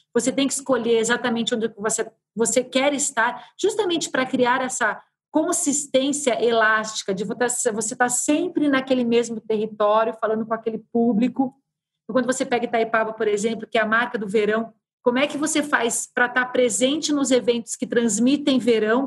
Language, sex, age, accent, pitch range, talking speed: Portuguese, female, 40-59, Brazilian, 220-260 Hz, 165 wpm